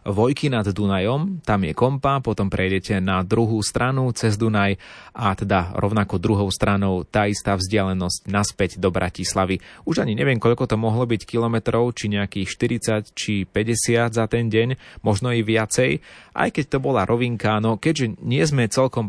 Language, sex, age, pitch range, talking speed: Slovak, male, 30-49, 100-120 Hz, 165 wpm